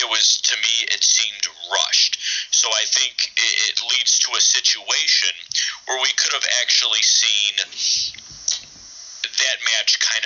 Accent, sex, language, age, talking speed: American, male, English, 40-59, 140 wpm